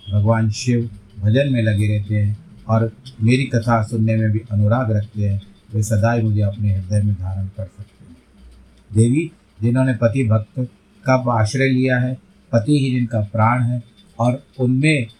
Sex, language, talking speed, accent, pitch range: male, Hindi, 165 wpm, native, 105-120 Hz